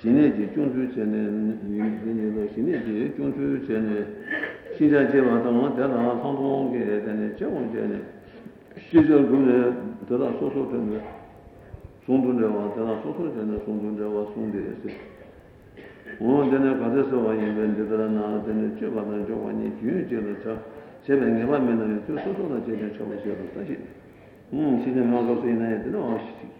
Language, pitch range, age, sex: Italian, 105-120 Hz, 60-79, male